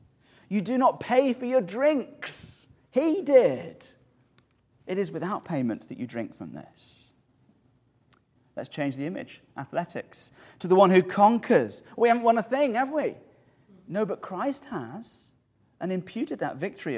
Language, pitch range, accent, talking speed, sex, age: English, 125-185 Hz, British, 150 wpm, male, 30-49